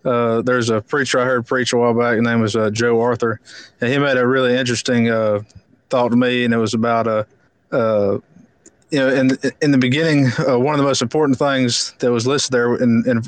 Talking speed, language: 230 wpm, English